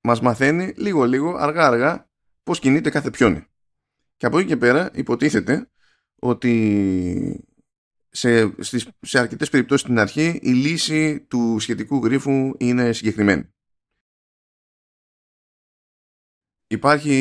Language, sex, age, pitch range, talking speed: Greek, male, 20-39, 100-135 Hz, 100 wpm